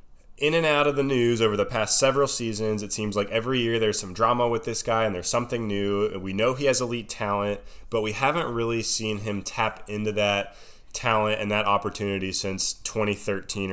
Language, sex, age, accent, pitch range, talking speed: English, male, 20-39, American, 95-115 Hz, 205 wpm